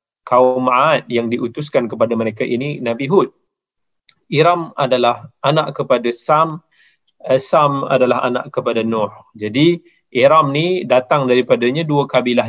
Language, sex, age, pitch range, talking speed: Malay, male, 30-49, 120-165 Hz, 125 wpm